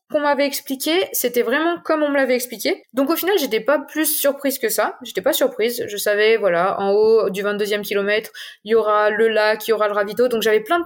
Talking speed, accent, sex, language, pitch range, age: 250 wpm, French, female, French, 220-280 Hz, 20-39